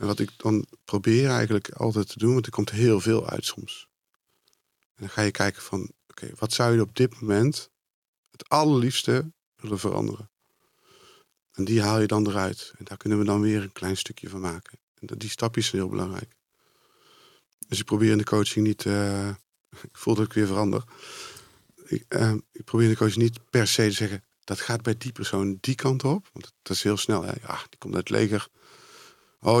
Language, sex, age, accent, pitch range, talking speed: Dutch, male, 50-69, Dutch, 100-120 Hz, 210 wpm